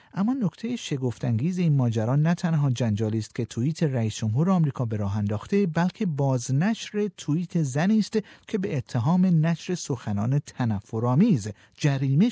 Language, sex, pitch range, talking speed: Persian, male, 125-170 Hz, 140 wpm